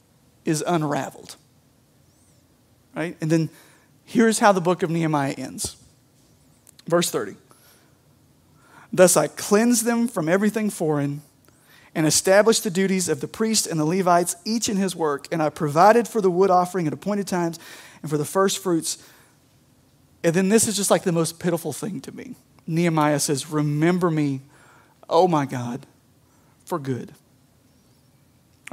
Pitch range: 140-185 Hz